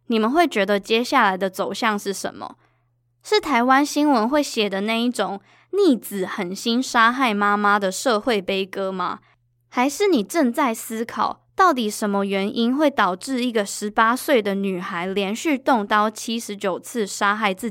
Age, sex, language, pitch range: 10-29, female, Chinese, 195-255 Hz